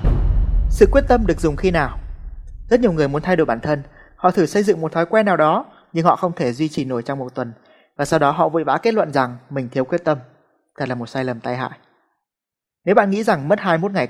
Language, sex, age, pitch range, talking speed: Vietnamese, male, 20-39, 140-185 Hz, 260 wpm